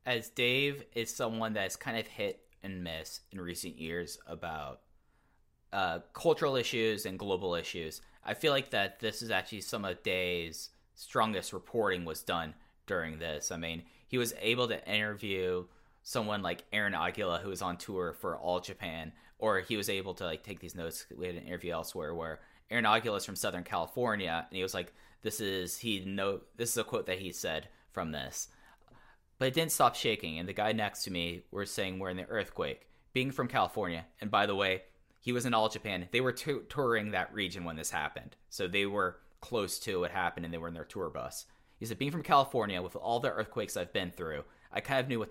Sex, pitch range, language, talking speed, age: male, 85-110 Hz, English, 215 wpm, 10-29